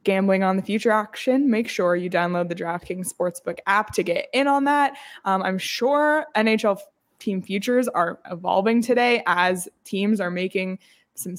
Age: 20-39